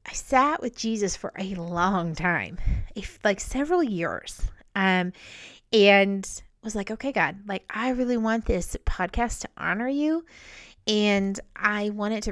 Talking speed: 150 wpm